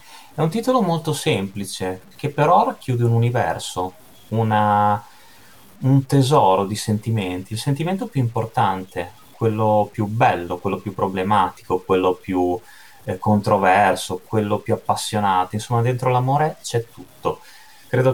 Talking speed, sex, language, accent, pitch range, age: 125 wpm, male, Italian, native, 100-135 Hz, 30-49